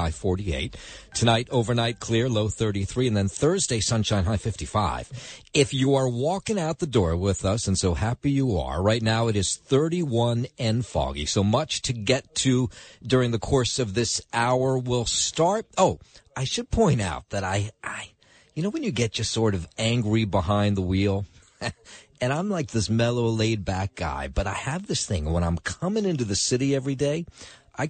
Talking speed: 190 wpm